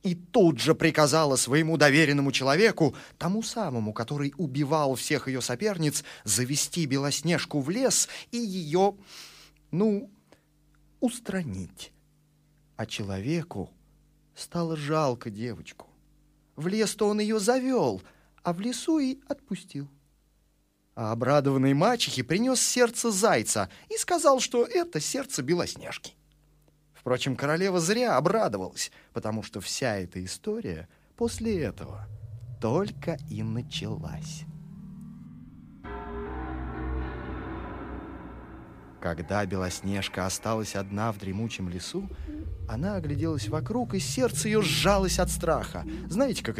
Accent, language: native, Russian